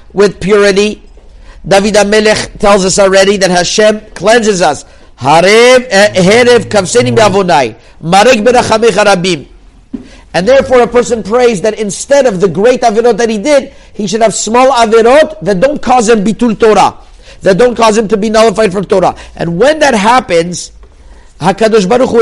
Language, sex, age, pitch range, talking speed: English, male, 50-69, 185-235 Hz, 140 wpm